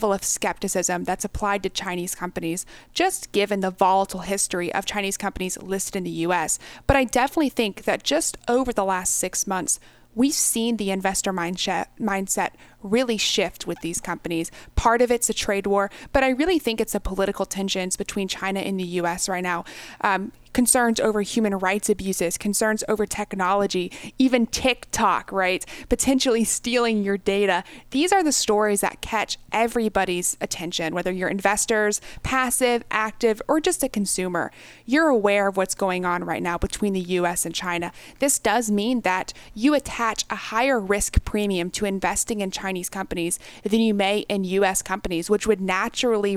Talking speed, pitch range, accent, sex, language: 170 wpm, 185-230 Hz, American, female, English